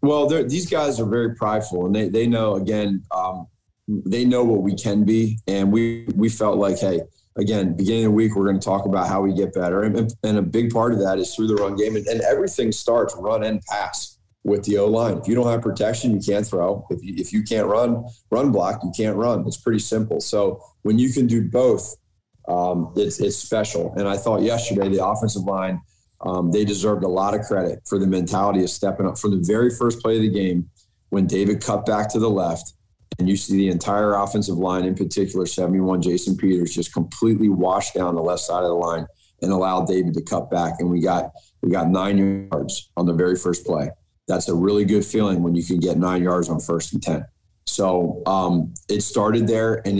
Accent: American